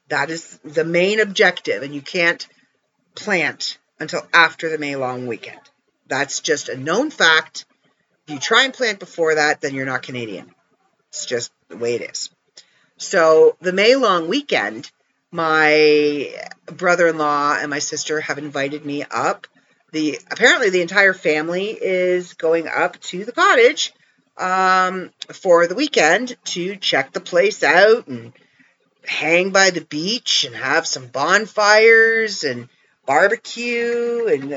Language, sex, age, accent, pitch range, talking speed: English, female, 50-69, American, 155-195 Hz, 145 wpm